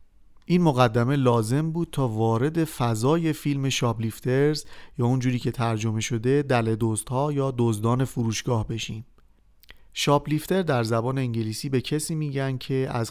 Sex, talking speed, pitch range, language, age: male, 135 wpm, 115-140 Hz, Persian, 40-59